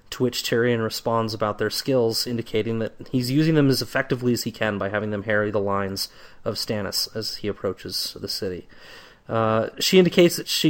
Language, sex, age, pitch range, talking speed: English, male, 30-49, 115-160 Hz, 195 wpm